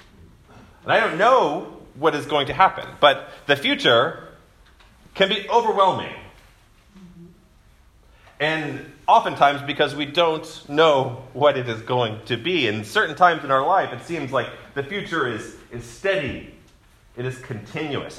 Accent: American